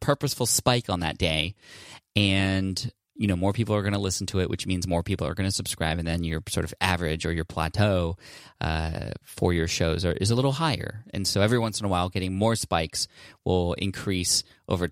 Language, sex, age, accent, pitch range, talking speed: English, male, 20-39, American, 90-110 Hz, 220 wpm